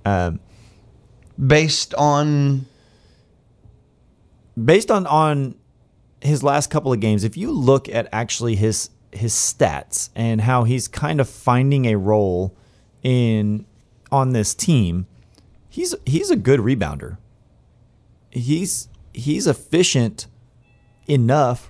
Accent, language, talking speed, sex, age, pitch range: American, English, 110 wpm, male, 30-49, 105-130 Hz